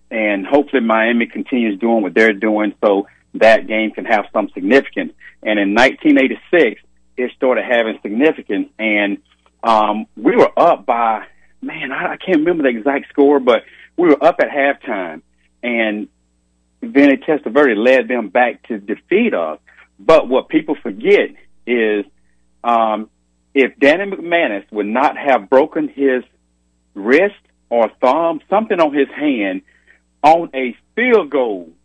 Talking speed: 140 wpm